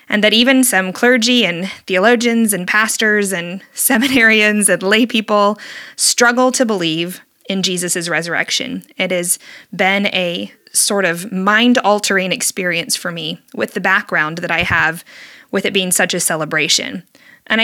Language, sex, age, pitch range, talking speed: English, female, 20-39, 185-235 Hz, 145 wpm